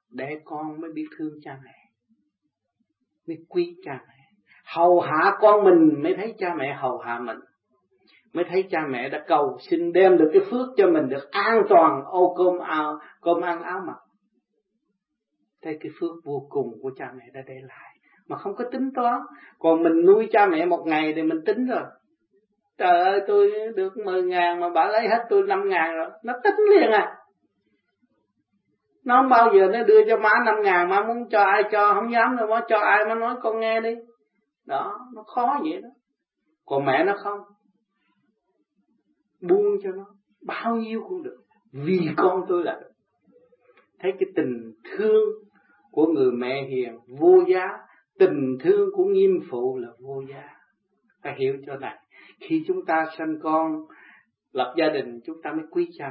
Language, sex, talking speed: Vietnamese, male, 185 wpm